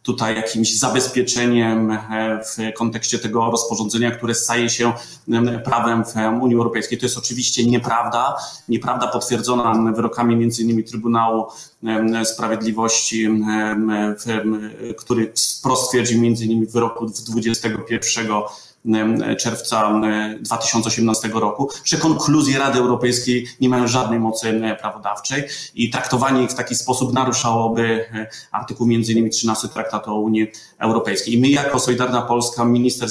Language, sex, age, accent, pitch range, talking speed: Polish, male, 30-49, native, 110-125 Hz, 120 wpm